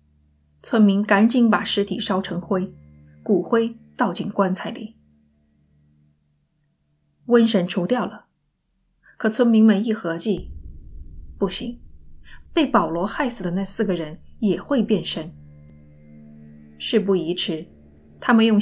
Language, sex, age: Chinese, female, 20-39